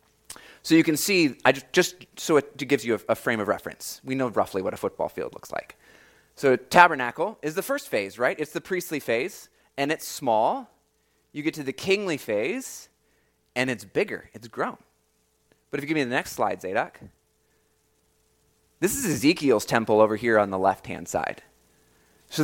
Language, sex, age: English, male, 20-39